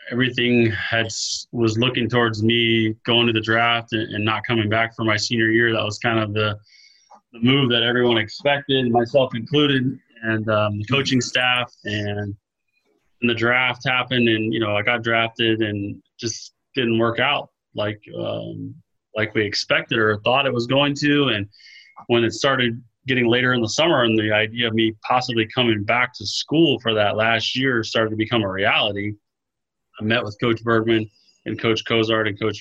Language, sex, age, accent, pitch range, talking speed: English, male, 20-39, American, 105-120 Hz, 185 wpm